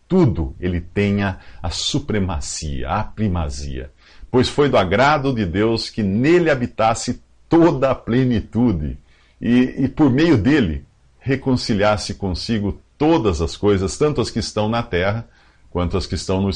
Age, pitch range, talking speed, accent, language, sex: 50-69, 90-125 Hz, 145 wpm, Brazilian, English, male